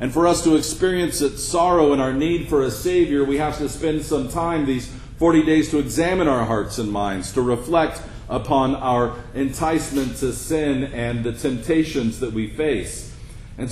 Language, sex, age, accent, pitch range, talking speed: English, male, 50-69, American, 125-155 Hz, 185 wpm